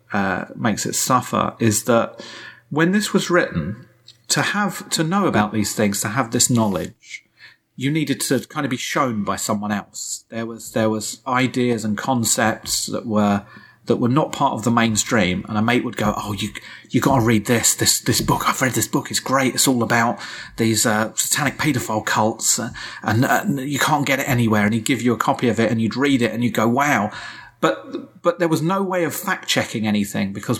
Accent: British